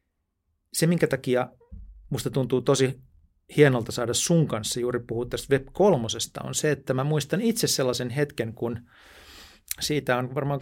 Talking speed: 155 wpm